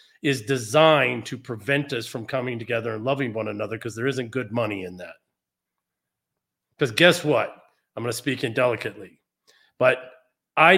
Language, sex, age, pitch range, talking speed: English, male, 40-59, 120-150 Hz, 160 wpm